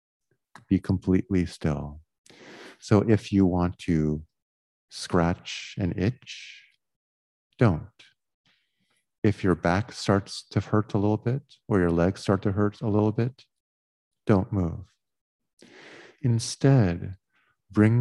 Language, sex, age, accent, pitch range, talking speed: English, male, 50-69, American, 80-105 Hz, 115 wpm